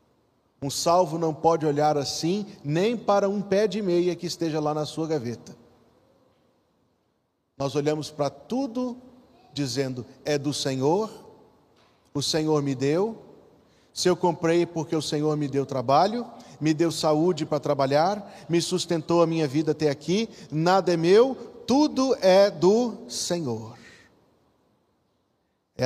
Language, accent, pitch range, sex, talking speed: Portuguese, Brazilian, 135-180 Hz, male, 135 wpm